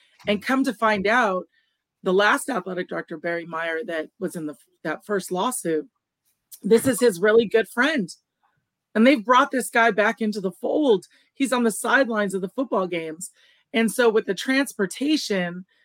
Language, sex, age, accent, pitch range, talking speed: English, female, 40-59, American, 185-235 Hz, 175 wpm